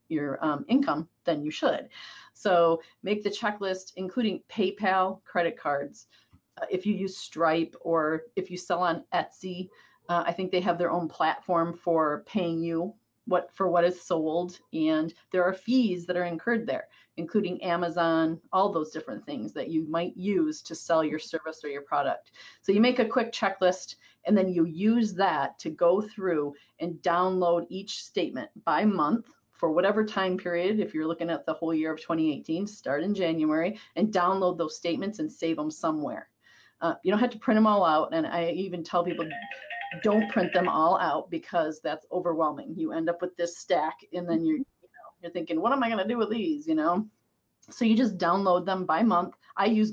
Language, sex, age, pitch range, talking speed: English, female, 40-59, 165-205 Hz, 195 wpm